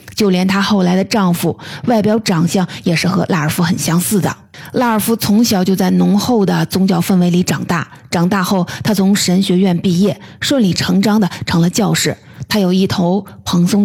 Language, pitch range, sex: Chinese, 170-210 Hz, female